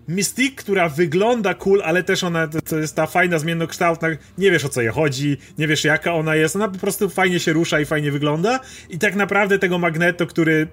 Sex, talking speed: male, 215 wpm